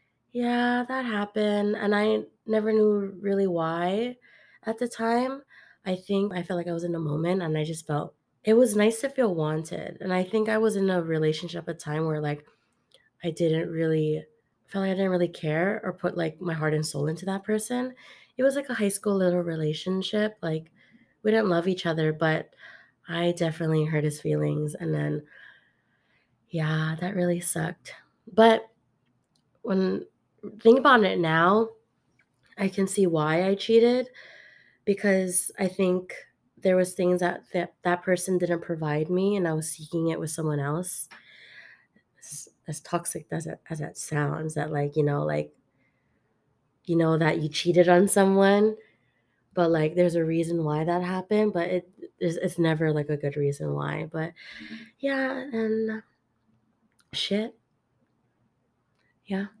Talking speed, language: 165 wpm, English